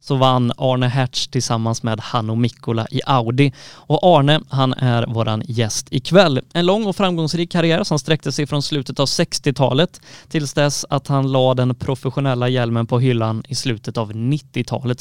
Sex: male